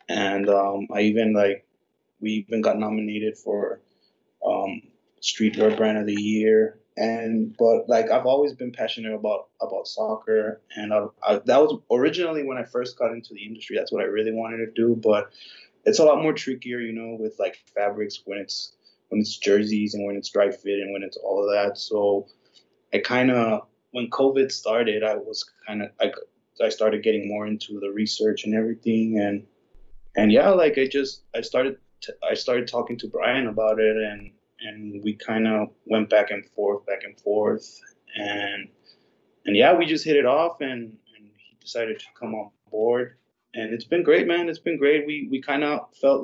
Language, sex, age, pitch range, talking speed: English, male, 20-39, 105-120 Hz, 190 wpm